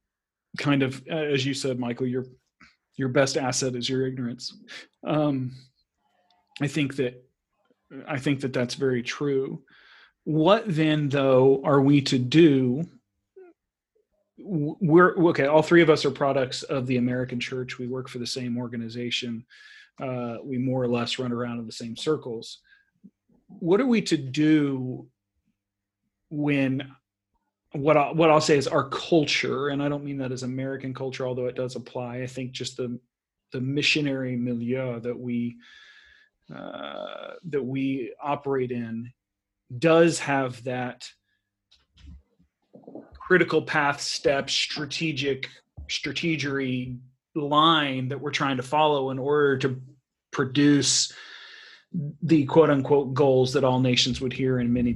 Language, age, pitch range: English, 40-59, 125-150 Hz